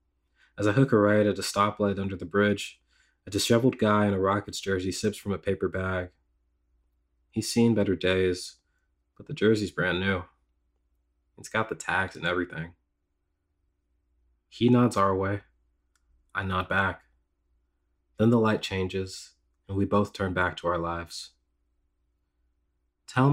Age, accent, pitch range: 20-39, American, 70-100 Hz